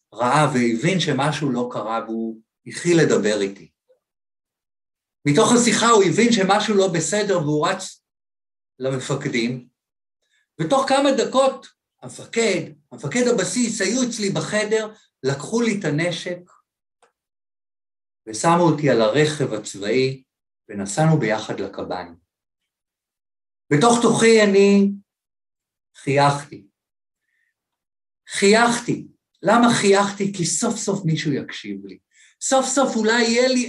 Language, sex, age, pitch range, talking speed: Hebrew, male, 50-69, 130-220 Hz, 105 wpm